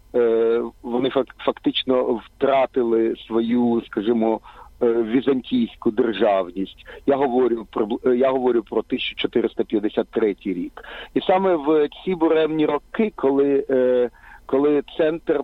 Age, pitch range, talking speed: 50-69, 120-145 Hz, 95 wpm